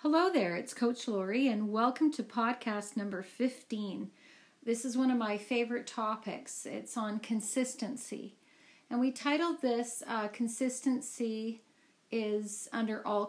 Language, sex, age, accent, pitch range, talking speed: English, female, 40-59, American, 210-255 Hz, 135 wpm